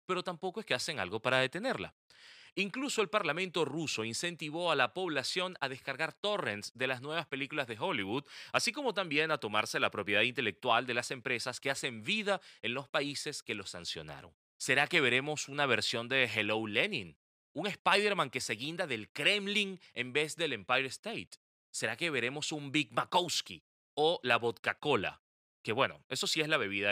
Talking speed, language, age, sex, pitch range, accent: 180 wpm, Spanish, 30-49, male, 115-180 Hz, Venezuelan